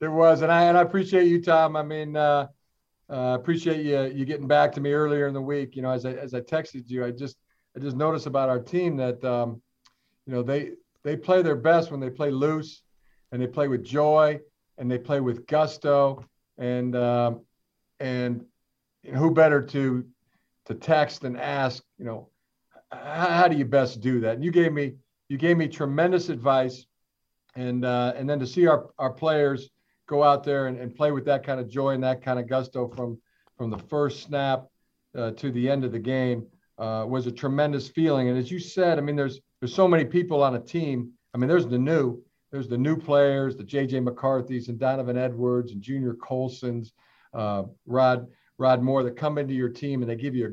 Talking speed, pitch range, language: 215 wpm, 125-150 Hz, English